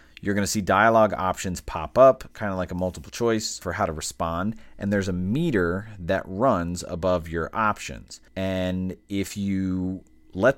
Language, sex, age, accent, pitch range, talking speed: English, male, 30-49, American, 85-110 Hz, 175 wpm